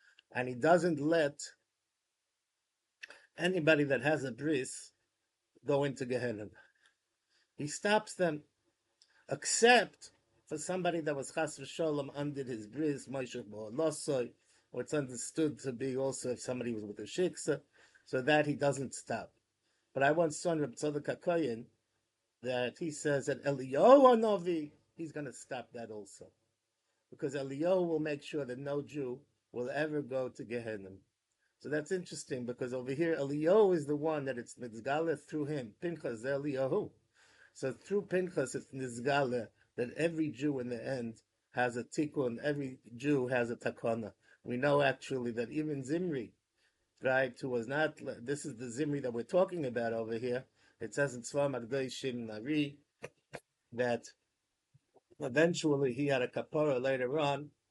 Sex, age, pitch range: male, 50-69, 120-150 Hz